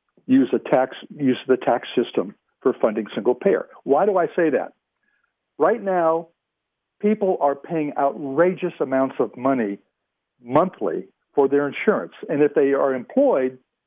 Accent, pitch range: American, 130-195 Hz